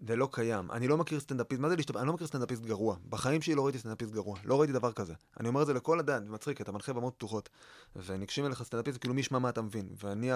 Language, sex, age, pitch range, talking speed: Hebrew, male, 30-49, 120-160 Hz, 270 wpm